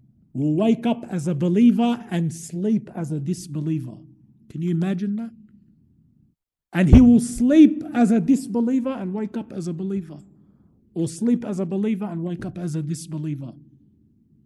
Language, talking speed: English, 160 wpm